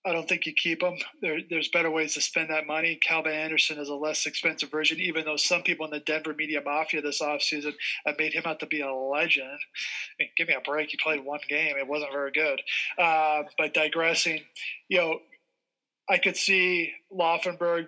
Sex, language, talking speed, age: male, English, 210 wpm, 20-39